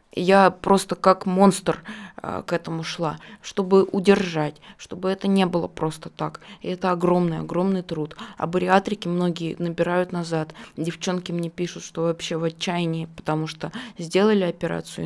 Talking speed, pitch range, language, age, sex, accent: 145 wpm, 165-215 Hz, Russian, 20-39, female, native